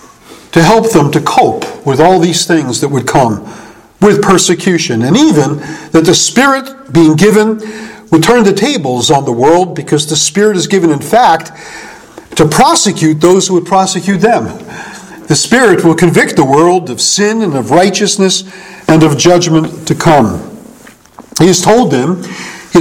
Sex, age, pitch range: male, 50-69, 155-200 Hz